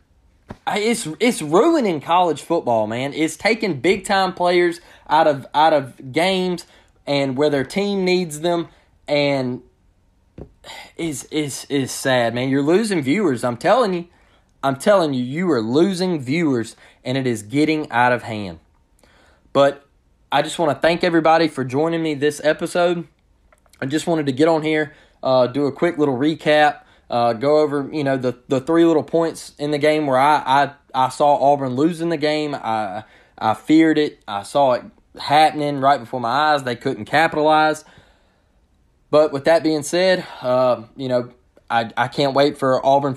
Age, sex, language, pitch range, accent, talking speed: 20-39, male, English, 120-155 Hz, American, 170 wpm